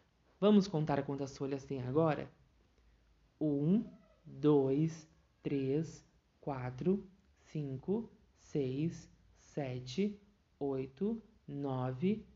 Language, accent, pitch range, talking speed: Portuguese, Brazilian, 135-200 Hz, 75 wpm